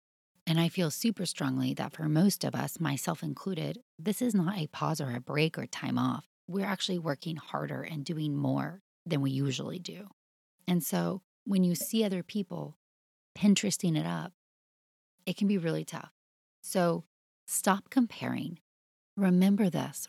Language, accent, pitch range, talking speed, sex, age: English, American, 145-190 Hz, 160 wpm, female, 30-49